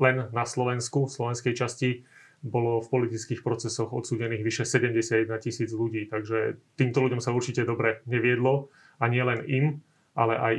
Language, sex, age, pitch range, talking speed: Slovak, male, 30-49, 115-125 Hz, 155 wpm